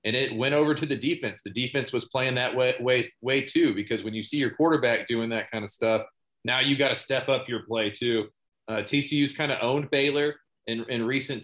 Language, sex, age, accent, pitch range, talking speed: English, male, 30-49, American, 105-140 Hz, 235 wpm